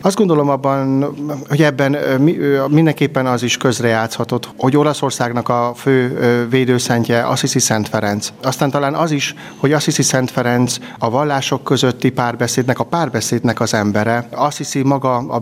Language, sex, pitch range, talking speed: Hungarian, male, 115-135 Hz, 140 wpm